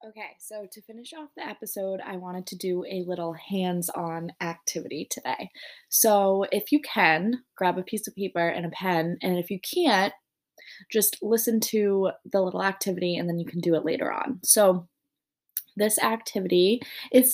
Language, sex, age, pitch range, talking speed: English, female, 20-39, 175-220 Hz, 175 wpm